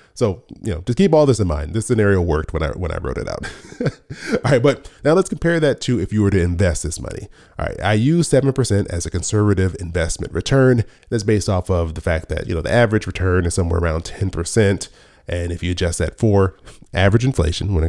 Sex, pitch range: male, 90-115 Hz